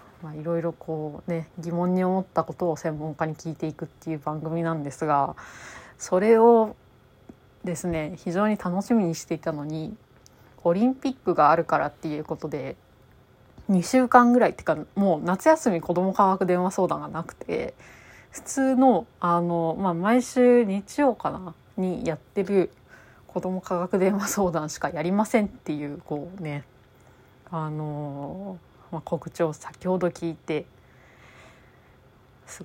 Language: Japanese